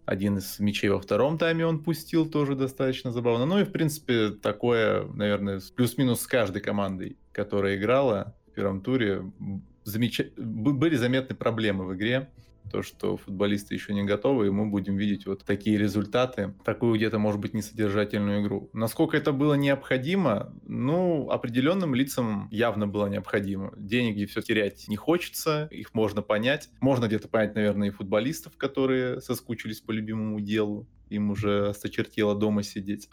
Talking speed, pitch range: 155 wpm, 105-130 Hz